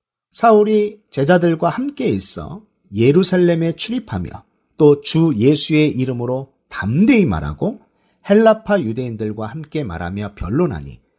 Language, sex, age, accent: Korean, male, 40-59, native